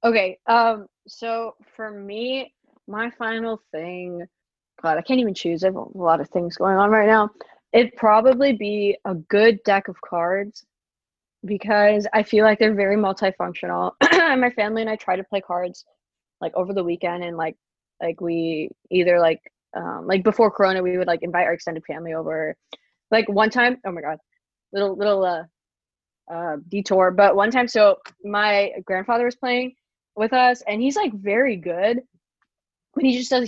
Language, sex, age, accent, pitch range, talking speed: English, female, 20-39, American, 185-280 Hz, 175 wpm